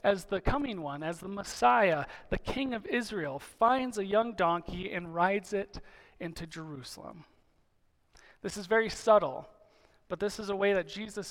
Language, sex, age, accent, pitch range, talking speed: English, male, 40-59, American, 180-220 Hz, 165 wpm